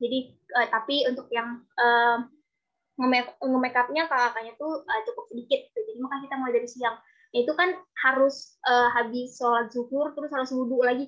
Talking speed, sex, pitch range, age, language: 175 wpm, female, 240-285 Hz, 20-39, Indonesian